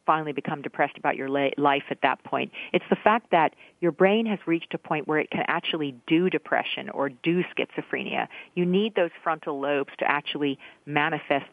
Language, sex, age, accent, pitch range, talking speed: English, female, 50-69, American, 140-170 Hz, 185 wpm